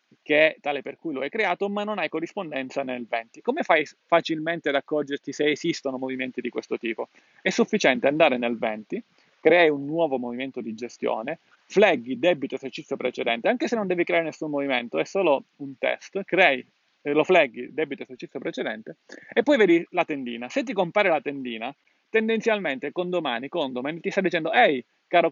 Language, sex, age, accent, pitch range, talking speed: Italian, male, 30-49, native, 135-185 Hz, 180 wpm